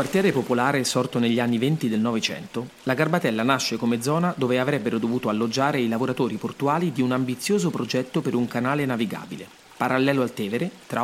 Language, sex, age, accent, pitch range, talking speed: Italian, male, 30-49, native, 120-145 Hz, 175 wpm